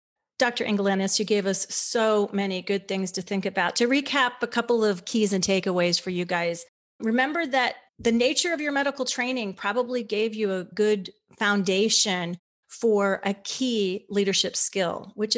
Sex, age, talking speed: female, 30-49, 170 wpm